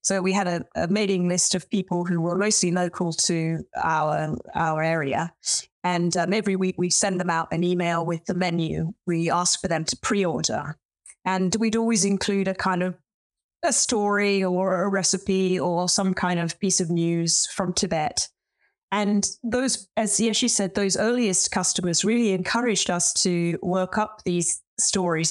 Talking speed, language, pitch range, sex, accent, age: 175 wpm, English, 175-210 Hz, female, British, 30-49